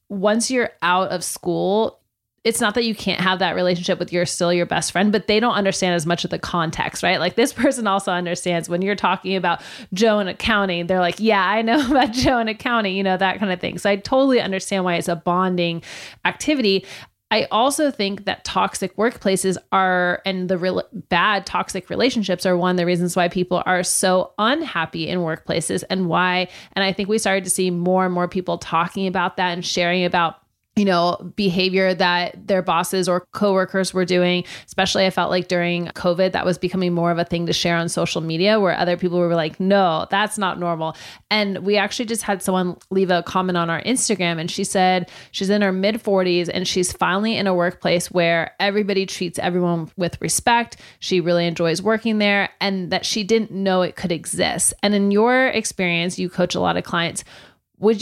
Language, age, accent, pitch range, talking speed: English, 30-49, American, 175-205 Hz, 210 wpm